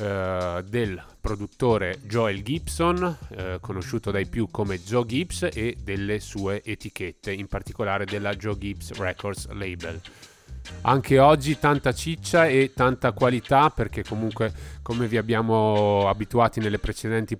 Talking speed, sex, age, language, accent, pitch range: 130 wpm, male, 30-49, Italian, native, 95-115 Hz